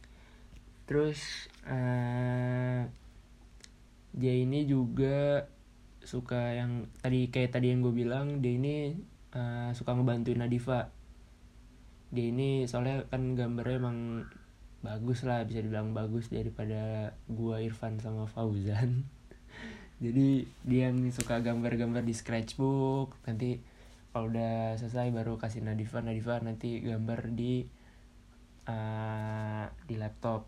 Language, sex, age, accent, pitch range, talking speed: Indonesian, male, 20-39, native, 115-130 Hz, 110 wpm